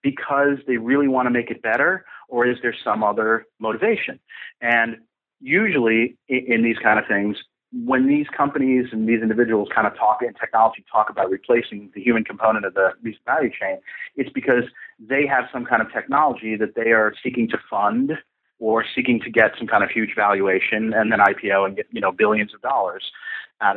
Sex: male